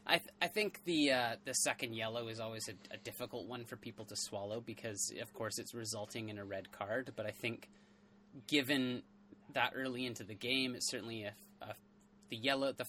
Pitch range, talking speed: 110-130 Hz, 205 wpm